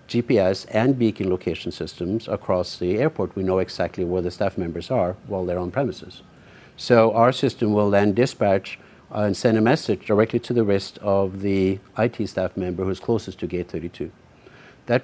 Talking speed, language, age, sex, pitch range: 175 wpm, English, 60-79, male, 95-115 Hz